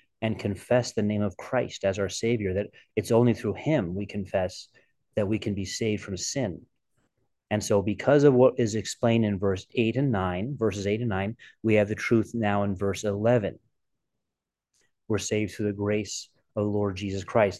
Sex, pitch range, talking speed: male, 100-115 Hz, 195 wpm